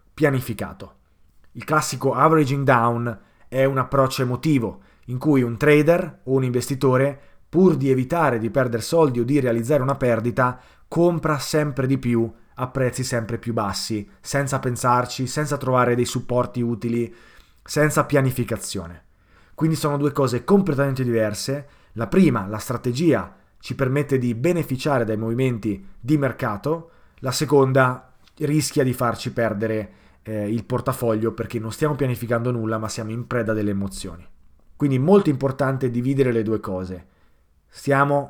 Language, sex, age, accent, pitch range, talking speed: Italian, male, 30-49, native, 115-140 Hz, 145 wpm